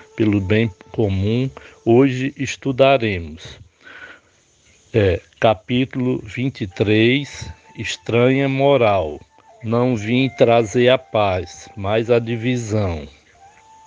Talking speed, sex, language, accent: 75 wpm, male, Portuguese, Brazilian